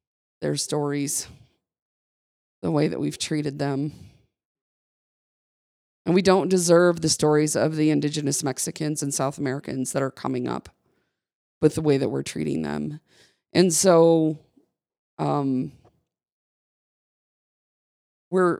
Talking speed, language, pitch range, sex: 115 wpm, English, 135-165 Hz, female